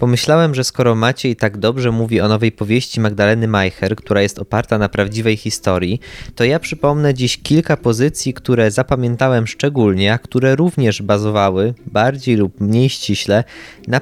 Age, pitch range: 20-39, 105-125 Hz